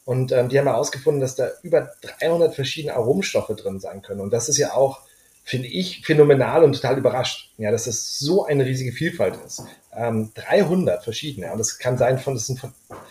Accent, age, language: German, 30-49, German